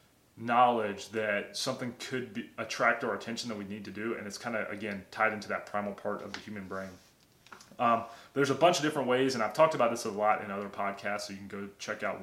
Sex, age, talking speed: male, 20-39, 240 wpm